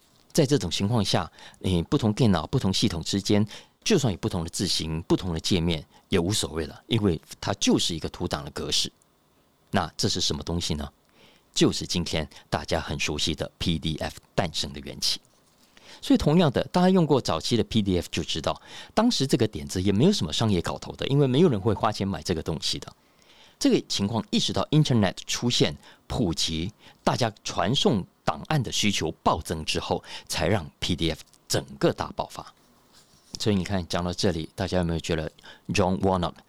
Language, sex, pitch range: Chinese, male, 80-105 Hz